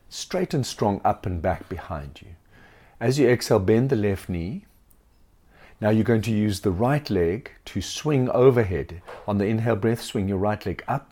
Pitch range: 85-110 Hz